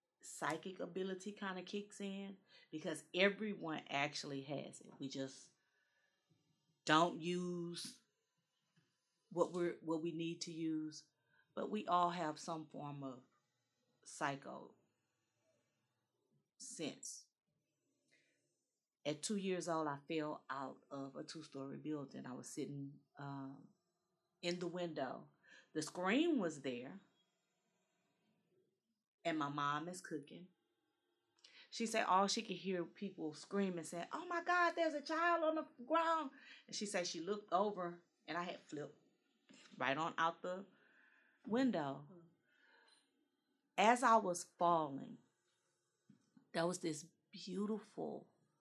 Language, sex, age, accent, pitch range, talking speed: English, female, 30-49, American, 155-200 Hz, 125 wpm